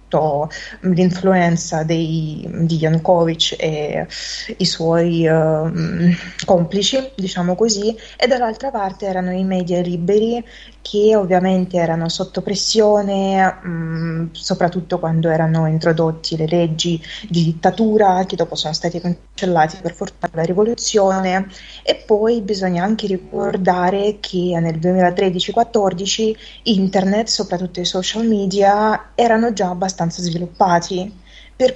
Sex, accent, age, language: female, native, 20-39, Italian